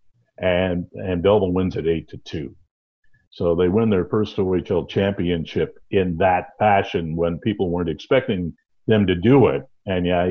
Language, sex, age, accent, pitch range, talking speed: English, male, 50-69, American, 90-120 Hz, 165 wpm